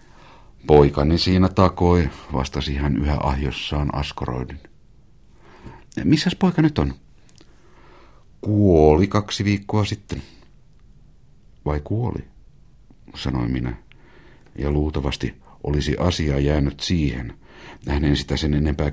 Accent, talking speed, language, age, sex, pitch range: native, 95 wpm, Finnish, 60-79, male, 70-95 Hz